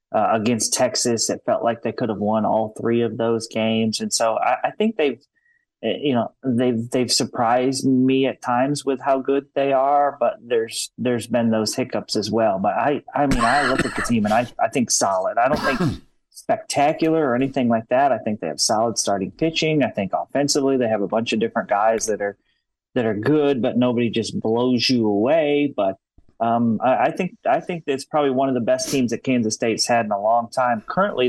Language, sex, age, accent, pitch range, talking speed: English, male, 30-49, American, 115-140 Hz, 220 wpm